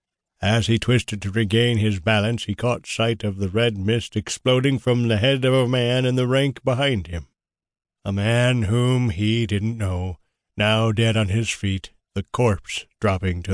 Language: English